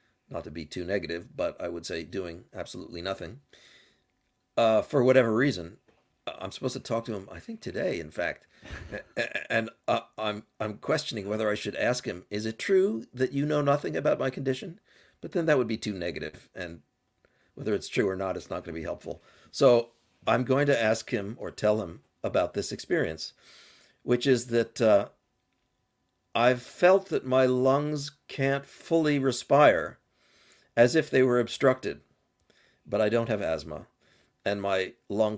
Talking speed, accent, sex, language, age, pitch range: 175 wpm, American, male, English, 50-69, 100-130 Hz